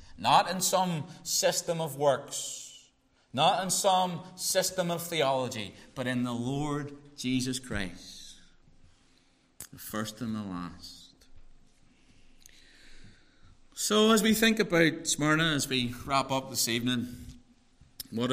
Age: 30-49